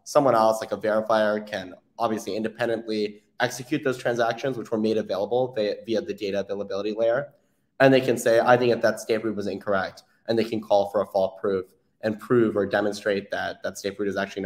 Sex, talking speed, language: male, 210 wpm, English